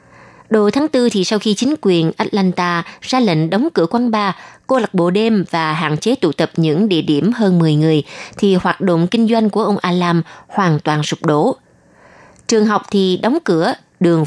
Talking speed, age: 200 wpm, 20-39